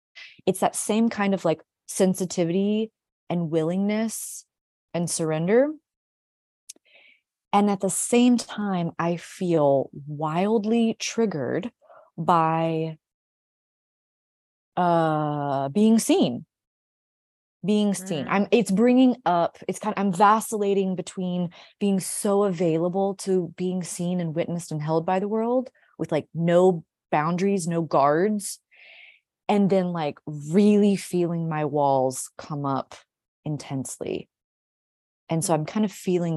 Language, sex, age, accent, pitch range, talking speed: English, female, 20-39, American, 145-195 Hz, 115 wpm